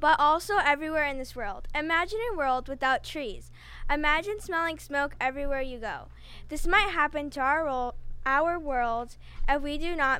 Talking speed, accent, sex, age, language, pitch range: 165 wpm, American, female, 10-29, English, 260-315 Hz